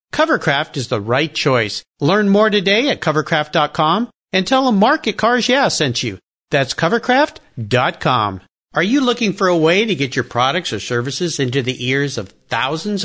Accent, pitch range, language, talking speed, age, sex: American, 125-200 Hz, English, 170 wpm, 50-69, male